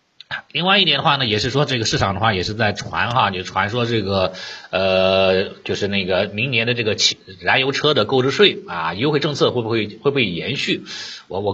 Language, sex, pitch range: Chinese, male, 105-135 Hz